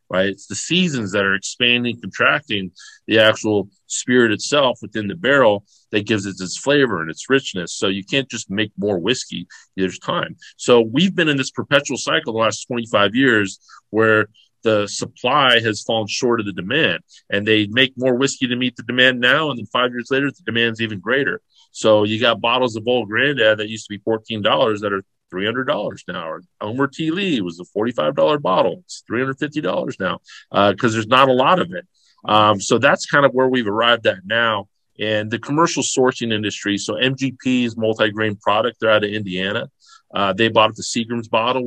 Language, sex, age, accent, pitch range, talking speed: English, male, 40-59, American, 105-130 Hz, 205 wpm